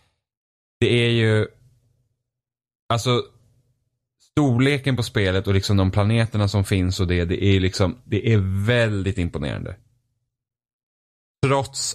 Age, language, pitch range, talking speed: 10-29, Swedish, 95-120 Hz, 115 wpm